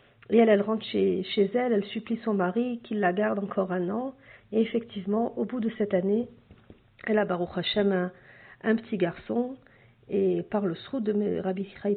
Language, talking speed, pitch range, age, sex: French, 190 wpm, 195-235 Hz, 50-69, female